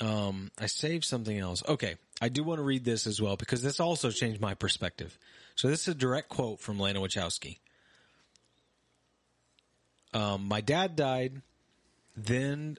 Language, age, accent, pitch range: English, 30-49, American, 105-135 Hz